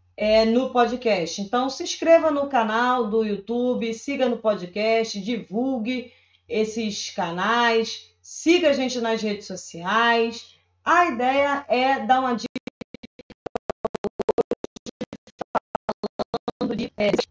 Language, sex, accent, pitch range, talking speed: Portuguese, female, Brazilian, 205-250 Hz, 95 wpm